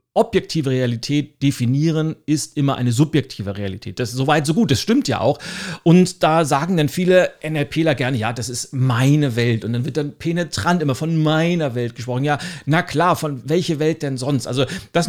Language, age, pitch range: German, 40-59, 135-185 Hz